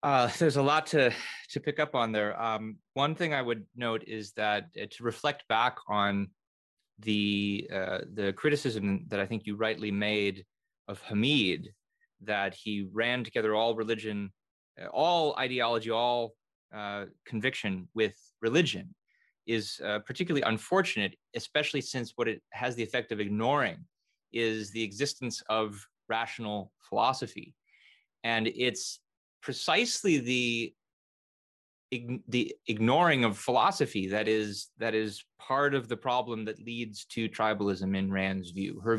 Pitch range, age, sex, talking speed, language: 105-130 Hz, 30-49, male, 135 wpm, English